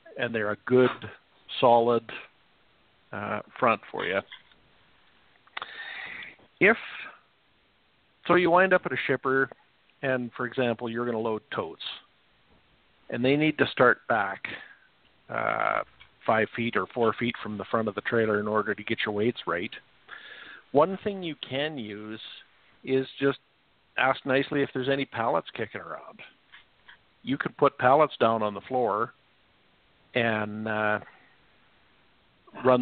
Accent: American